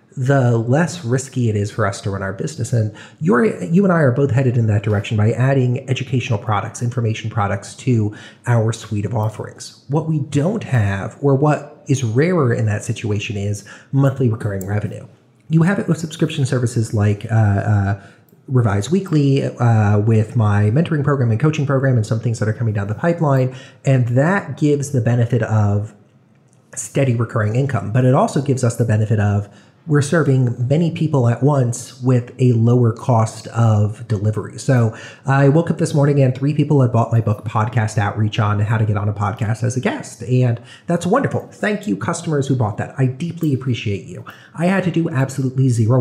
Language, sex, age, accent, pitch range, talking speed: English, male, 30-49, American, 110-140 Hz, 195 wpm